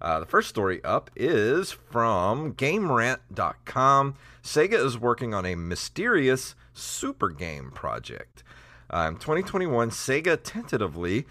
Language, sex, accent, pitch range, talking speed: English, male, American, 95-135 Hz, 110 wpm